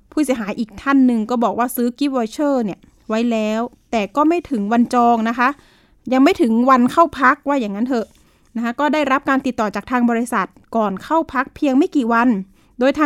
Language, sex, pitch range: Thai, female, 220-280 Hz